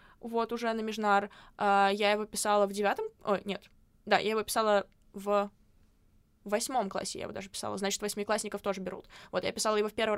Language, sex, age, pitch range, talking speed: Russian, female, 20-39, 195-220 Hz, 195 wpm